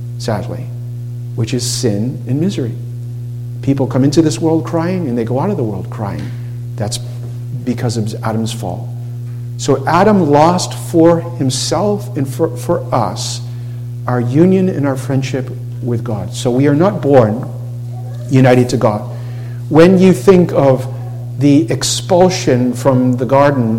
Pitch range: 120-140 Hz